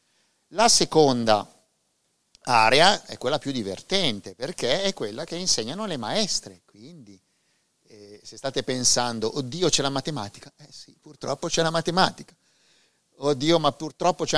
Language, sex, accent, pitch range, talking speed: Italian, male, native, 110-145 Hz, 140 wpm